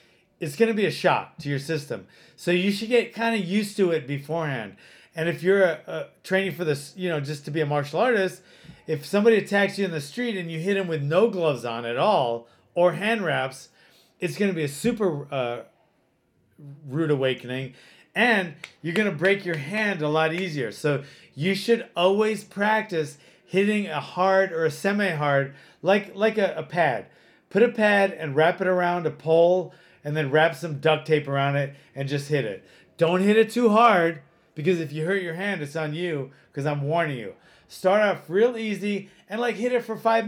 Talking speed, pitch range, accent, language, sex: 205 wpm, 155-200 Hz, American, English, male